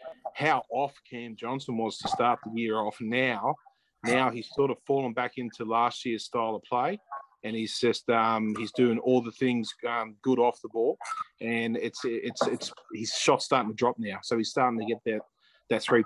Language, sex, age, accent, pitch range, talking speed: English, male, 30-49, Australian, 115-135 Hz, 210 wpm